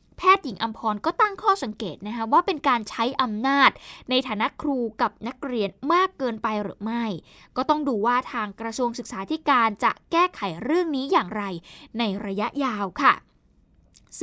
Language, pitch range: Thai, 220-280 Hz